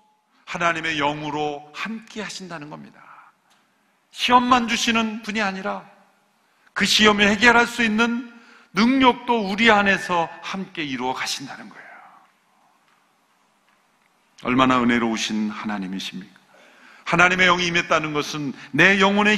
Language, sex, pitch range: Korean, male, 145-215 Hz